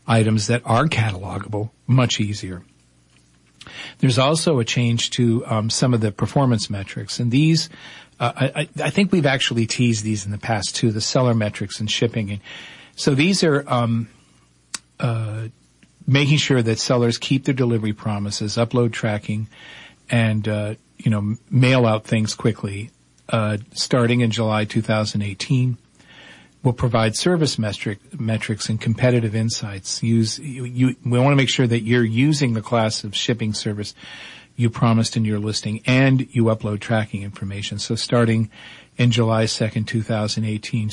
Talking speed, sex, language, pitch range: 155 wpm, male, English, 105-125 Hz